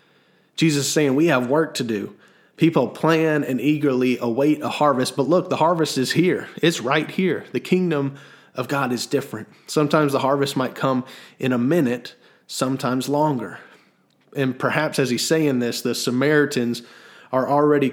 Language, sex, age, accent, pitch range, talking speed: English, male, 30-49, American, 125-150 Hz, 165 wpm